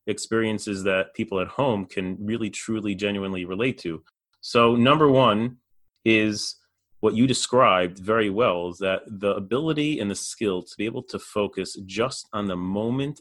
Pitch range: 95-115 Hz